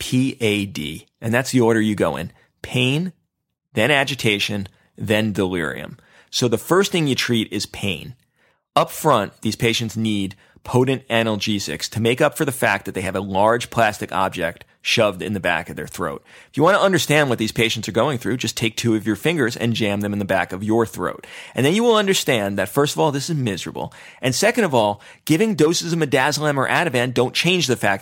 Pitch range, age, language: 105-135 Hz, 30-49, English